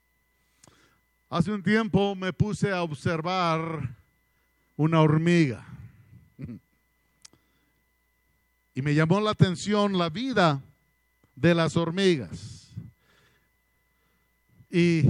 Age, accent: 50-69, Mexican